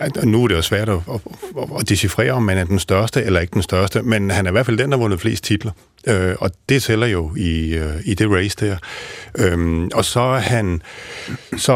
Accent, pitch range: native, 90-115 Hz